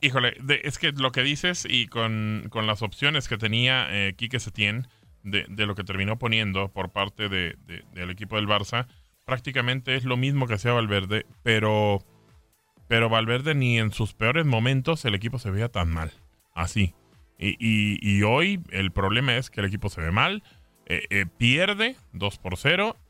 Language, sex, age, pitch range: Spanish, male, 20-39, 100-125 Hz